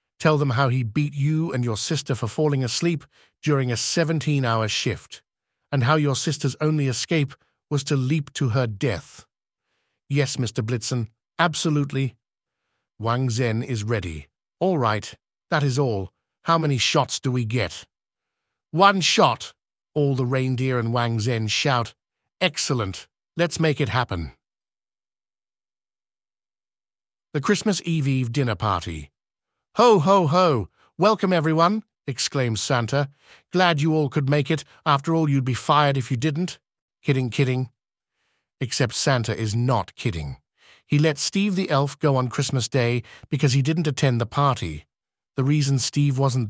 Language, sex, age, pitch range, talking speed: English, male, 50-69, 120-155 Hz, 145 wpm